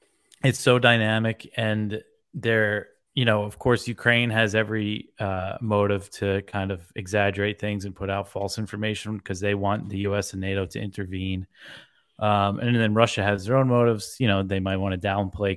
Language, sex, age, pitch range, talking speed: English, male, 20-39, 100-120 Hz, 185 wpm